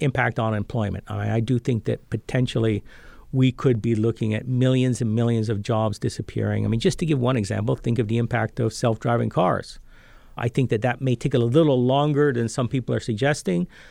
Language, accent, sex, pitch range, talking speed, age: English, American, male, 110-135 Hz, 210 wpm, 50-69